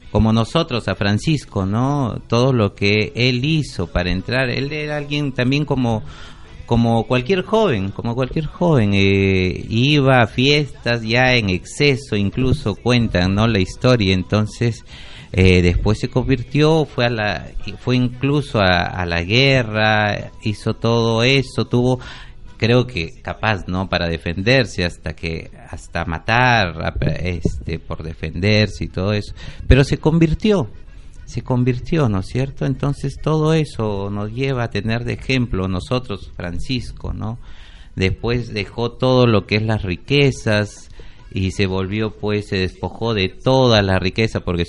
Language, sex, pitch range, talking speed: Spanish, male, 95-130 Hz, 145 wpm